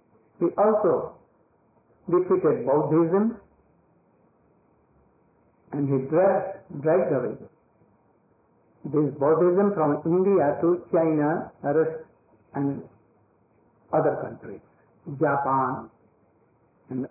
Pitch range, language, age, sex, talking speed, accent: 140-190 Hz, English, 60-79, male, 70 wpm, Indian